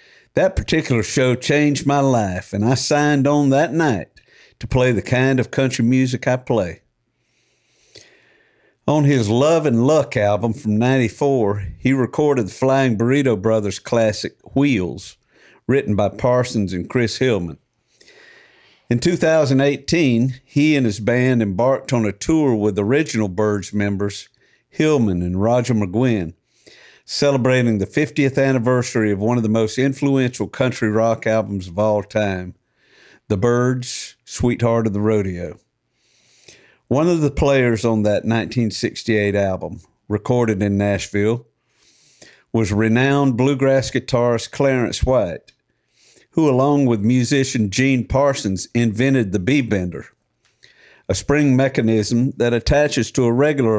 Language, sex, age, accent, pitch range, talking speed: English, male, 50-69, American, 110-135 Hz, 130 wpm